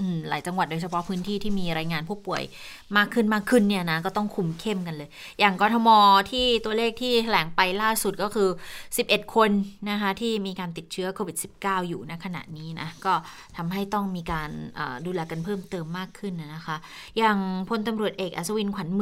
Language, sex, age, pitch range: Thai, female, 20-39, 170-205 Hz